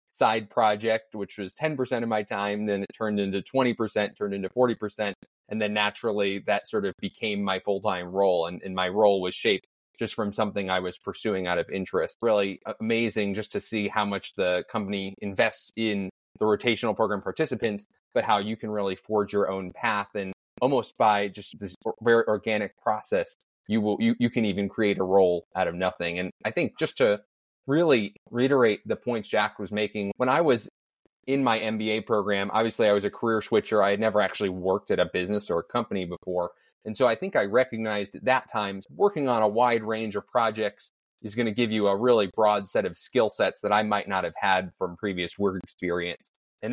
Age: 20-39